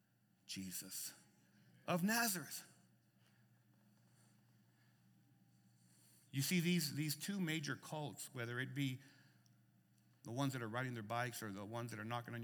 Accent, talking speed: American, 130 wpm